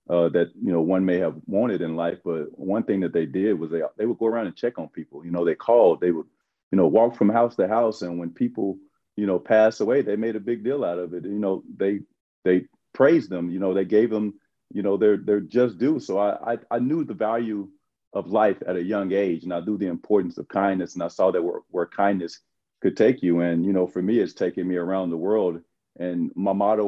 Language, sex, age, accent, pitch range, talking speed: English, male, 40-59, American, 90-105 Hz, 255 wpm